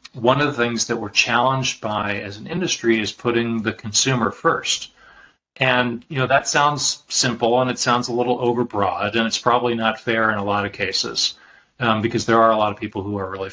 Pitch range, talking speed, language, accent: 110-130 Hz, 215 wpm, English, American